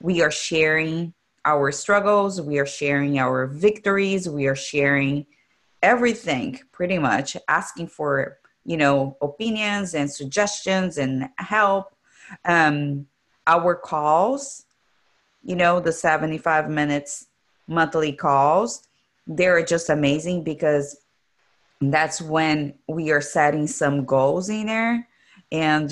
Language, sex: English, female